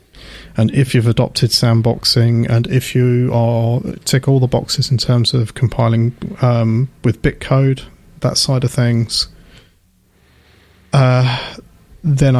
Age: 30-49